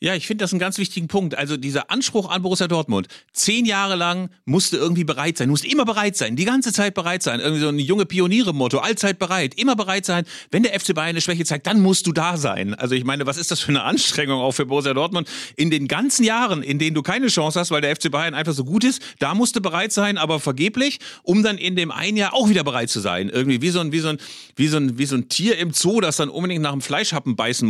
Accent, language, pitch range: German, German, 145-200 Hz